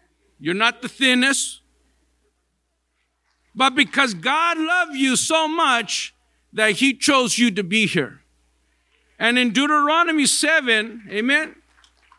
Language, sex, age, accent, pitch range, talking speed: English, male, 50-69, American, 190-270 Hz, 115 wpm